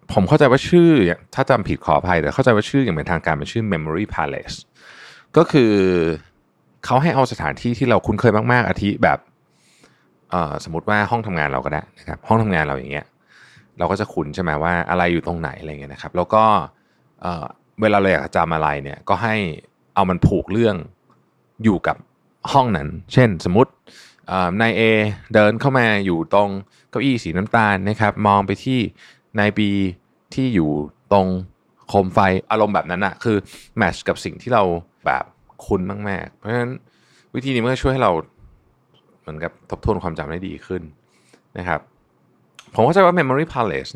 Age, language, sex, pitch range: 20-39, Thai, male, 80-110 Hz